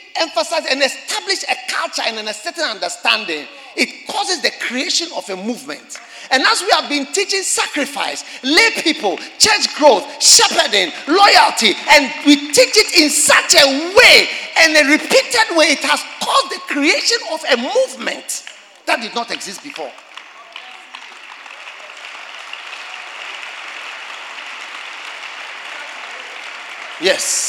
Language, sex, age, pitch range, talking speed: English, male, 50-69, 285-425 Hz, 120 wpm